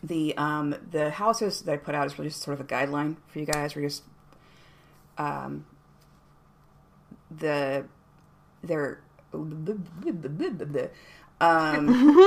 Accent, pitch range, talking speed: American, 145-165 Hz, 110 wpm